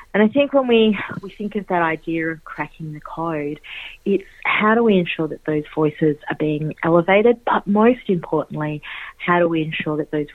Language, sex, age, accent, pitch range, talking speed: English, female, 30-49, Australian, 150-190 Hz, 195 wpm